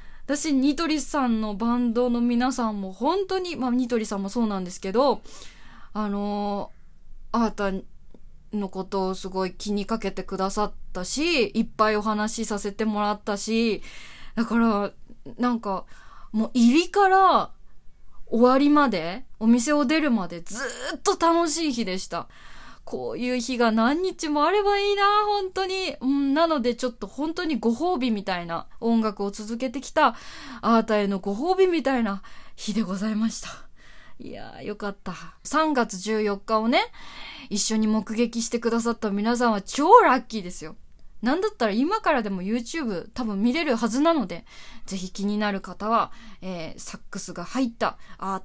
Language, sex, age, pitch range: Japanese, female, 20-39, 205-270 Hz